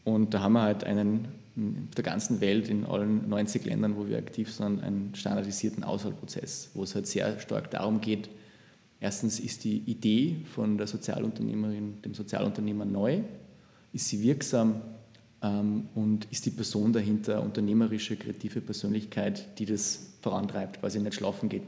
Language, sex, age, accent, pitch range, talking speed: German, male, 20-39, German, 105-120 Hz, 160 wpm